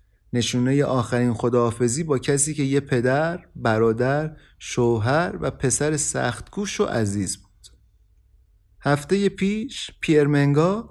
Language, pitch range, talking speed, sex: Persian, 125-165 Hz, 105 wpm, male